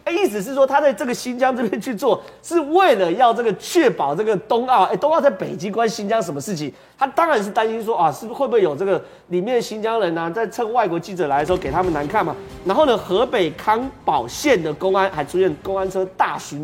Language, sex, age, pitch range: Chinese, male, 30-49, 180-240 Hz